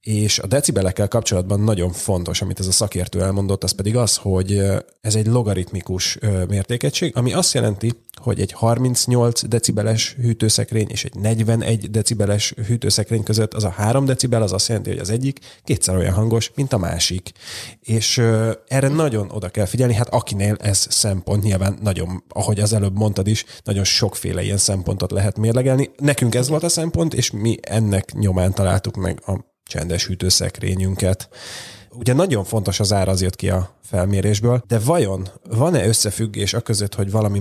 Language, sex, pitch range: Hungarian, male, 100-120 Hz